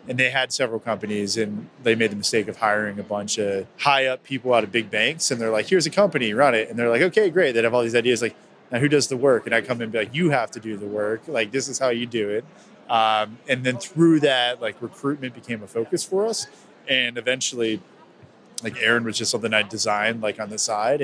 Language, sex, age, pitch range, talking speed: English, male, 20-39, 110-140 Hz, 260 wpm